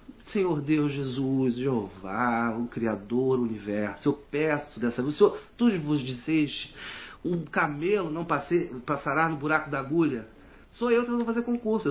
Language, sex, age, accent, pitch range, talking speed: Portuguese, male, 40-59, Brazilian, 125-205 Hz, 150 wpm